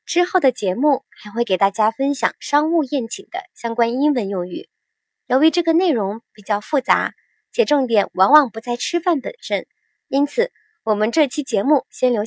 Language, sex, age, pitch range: Chinese, male, 20-39, 220-305 Hz